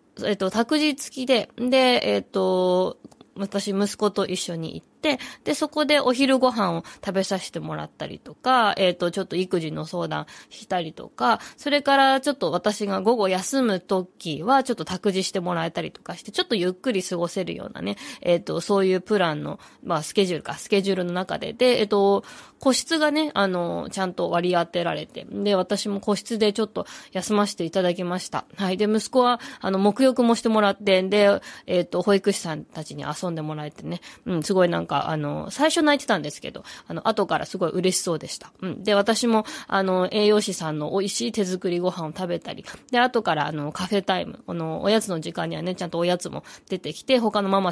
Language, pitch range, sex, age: Japanese, 180-245 Hz, female, 20-39